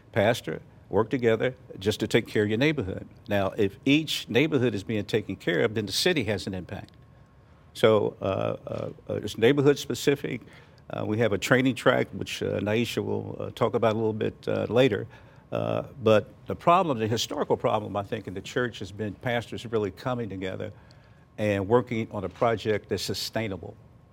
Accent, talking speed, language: American, 180 wpm, English